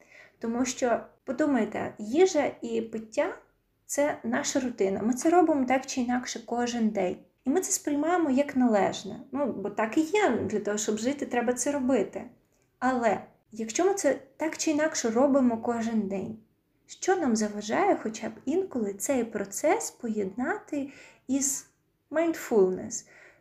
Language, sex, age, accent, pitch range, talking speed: Ukrainian, female, 20-39, native, 215-270 Hz, 145 wpm